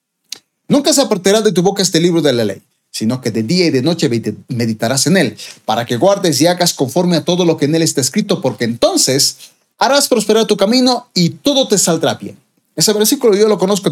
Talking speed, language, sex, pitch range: 220 wpm, Spanish, male, 135-200 Hz